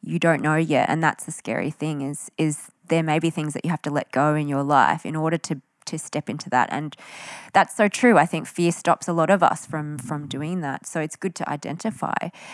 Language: English